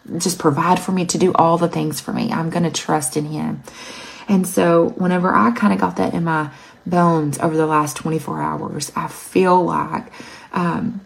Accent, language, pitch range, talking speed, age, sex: American, English, 150-180 Hz, 200 wpm, 30-49, female